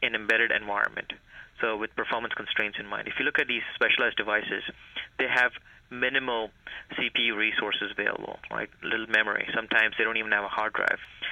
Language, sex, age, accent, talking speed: English, male, 30-49, Indian, 180 wpm